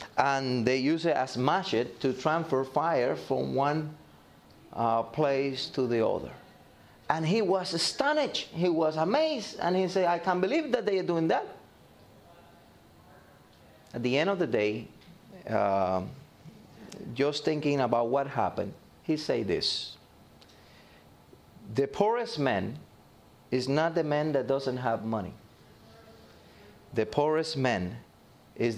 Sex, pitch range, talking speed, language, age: male, 125-175 Hz, 135 wpm, English, 30-49